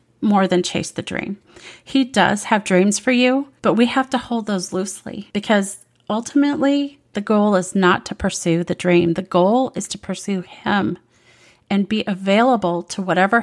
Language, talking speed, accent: English, 175 wpm, American